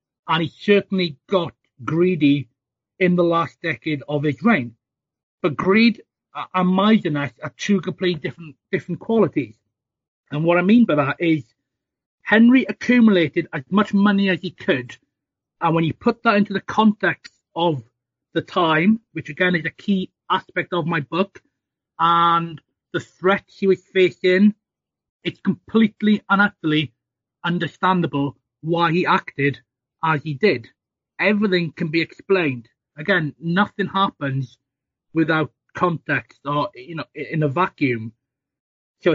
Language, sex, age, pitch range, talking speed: English, male, 30-49, 150-195 Hz, 140 wpm